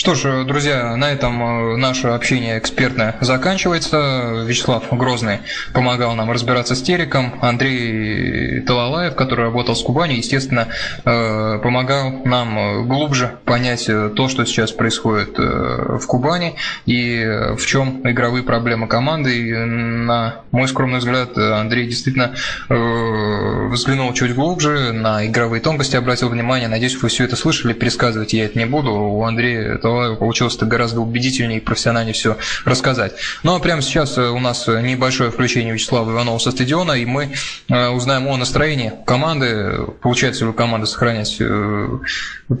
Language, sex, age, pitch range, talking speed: Russian, male, 20-39, 115-130 Hz, 135 wpm